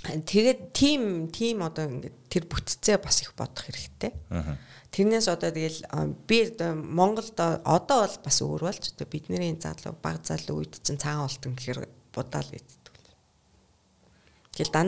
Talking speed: 135 wpm